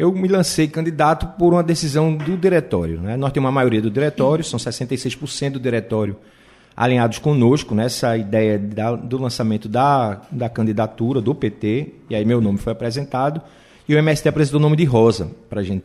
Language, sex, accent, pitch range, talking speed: Portuguese, male, Brazilian, 115-145 Hz, 190 wpm